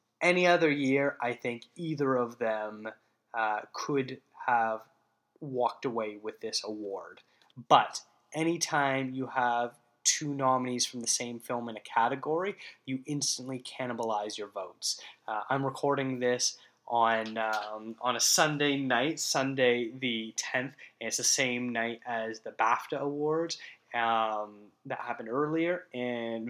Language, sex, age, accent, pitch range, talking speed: English, male, 10-29, American, 115-140 Hz, 140 wpm